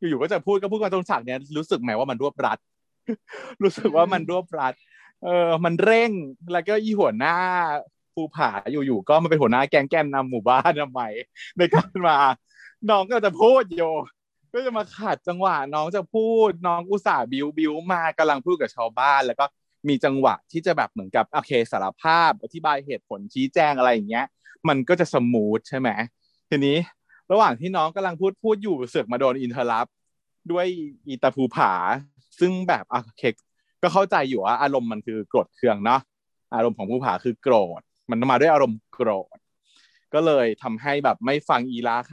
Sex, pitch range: male, 135-195 Hz